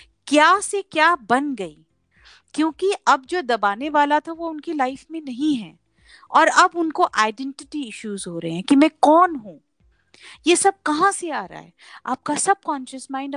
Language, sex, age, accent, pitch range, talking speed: Hindi, female, 50-69, native, 240-320 Hz, 180 wpm